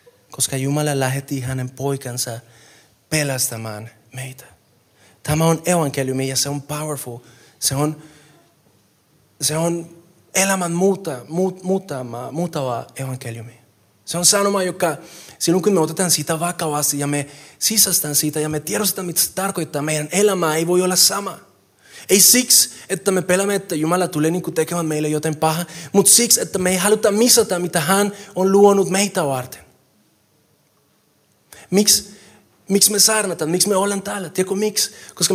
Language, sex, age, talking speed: Finnish, male, 20-39, 150 wpm